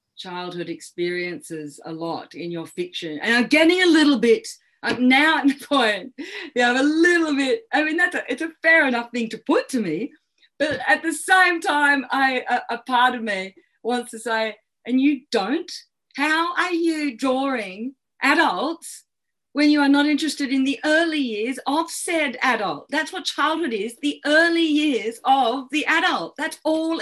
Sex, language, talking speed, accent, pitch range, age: female, English, 175 wpm, Australian, 230-310 Hz, 40-59